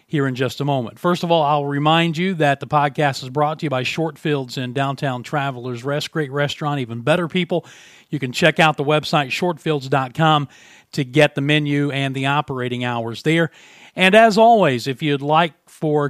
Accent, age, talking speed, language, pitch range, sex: American, 40-59, 195 wpm, English, 140-180 Hz, male